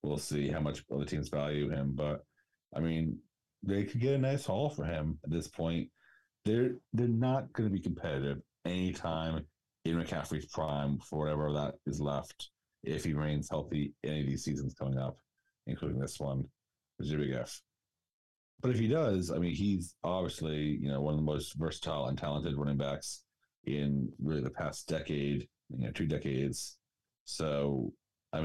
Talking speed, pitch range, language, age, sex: 175 wpm, 70-85 Hz, English, 30-49, male